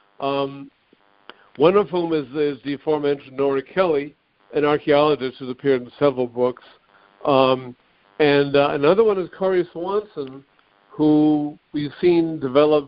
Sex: male